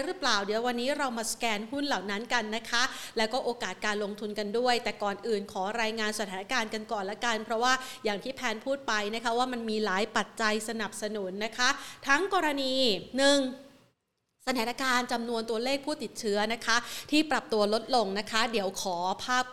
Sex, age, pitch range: female, 30-49, 215-260 Hz